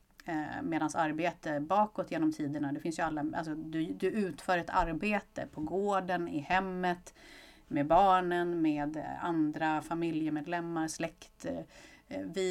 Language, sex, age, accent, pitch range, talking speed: English, female, 30-49, Swedish, 150-185 Hz, 125 wpm